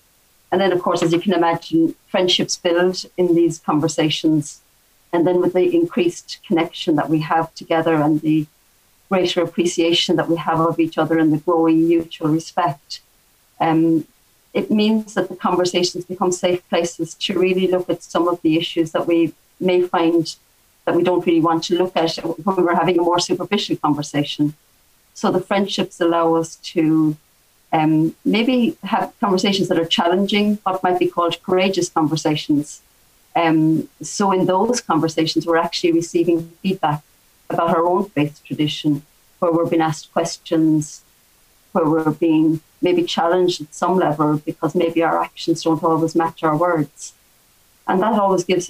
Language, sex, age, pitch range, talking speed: English, female, 40-59, 160-180 Hz, 165 wpm